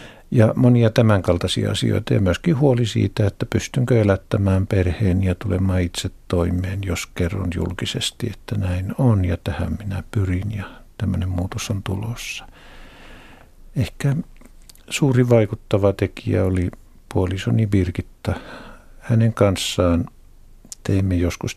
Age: 50-69